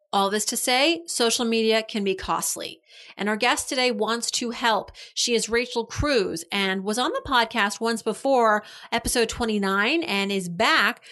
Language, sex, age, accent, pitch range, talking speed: English, female, 30-49, American, 195-250 Hz, 175 wpm